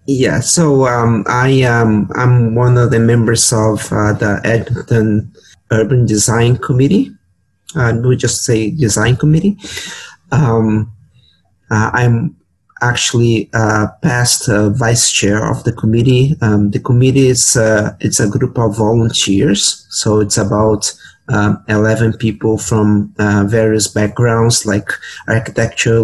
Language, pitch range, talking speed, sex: English, 105-120 Hz, 135 wpm, male